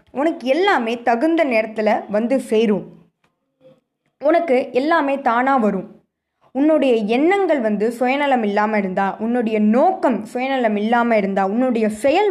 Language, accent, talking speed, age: Tamil, native, 110 wpm, 20-39